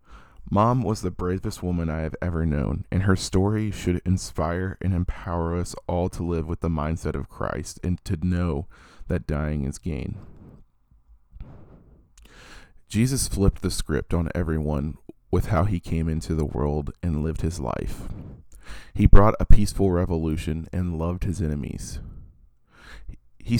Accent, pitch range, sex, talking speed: American, 80-95 Hz, male, 150 wpm